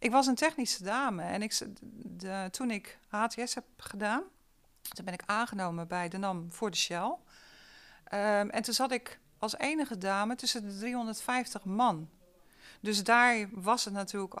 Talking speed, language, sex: 155 wpm, Dutch, female